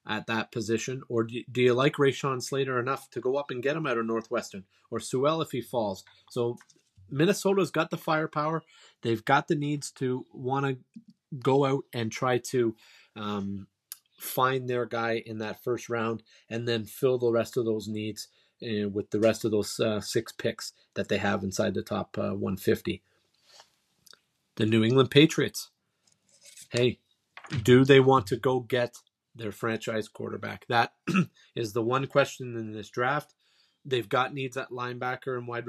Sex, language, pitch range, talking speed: male, English, 115-130 Hz, 175 wpm